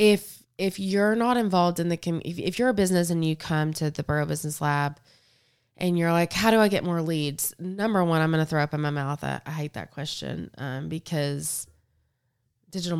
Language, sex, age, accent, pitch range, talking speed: English, female, 20-39, American, 145-175 Hz, 210 wpm